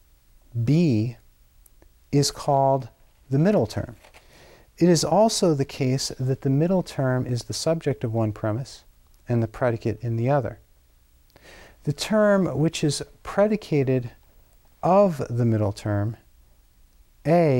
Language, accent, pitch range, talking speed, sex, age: English, American, 105-140 Hz, 125 wpm, male, 40-59